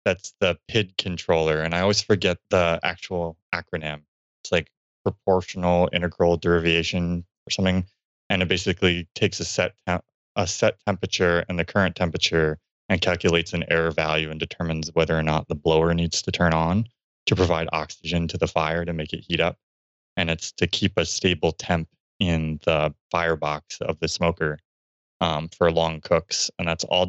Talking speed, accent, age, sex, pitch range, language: 175 wpm, American, 20-39, male, 80-90 Hz, English